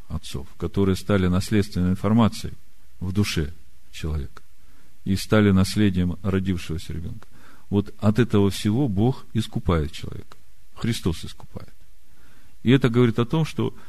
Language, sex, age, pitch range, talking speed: Russian, male, 50-69, 85-115 Hz, 120 wpm